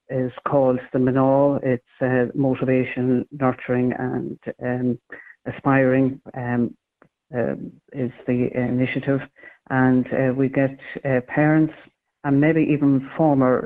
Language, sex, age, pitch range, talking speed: English, female, 60-79, 125-135 Hz, 115 wpm